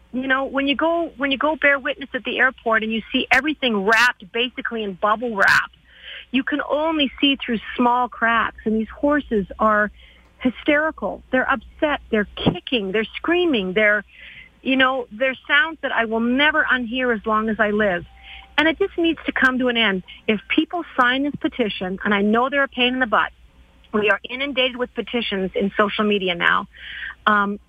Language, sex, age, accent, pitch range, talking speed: English, female, 40-59, American, 220-275 Hz, 190 wpm